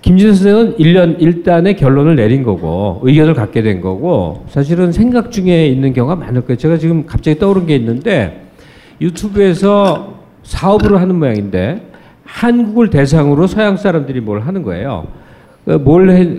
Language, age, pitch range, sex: Korean, 50-69, 125-195 Hz, male